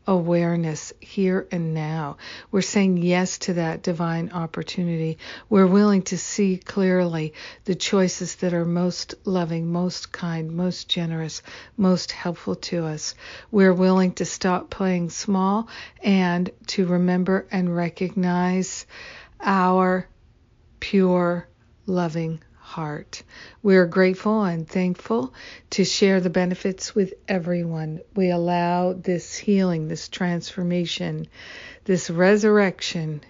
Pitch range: 165-190 Hz